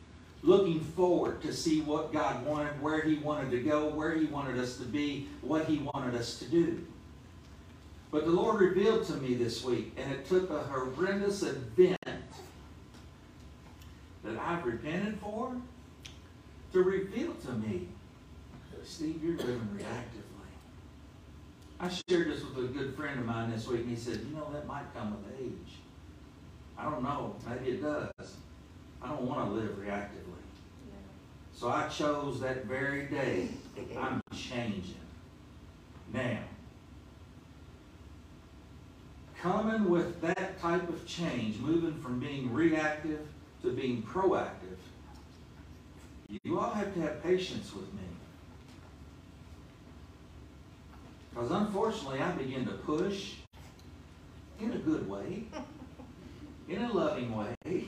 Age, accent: 60-79, American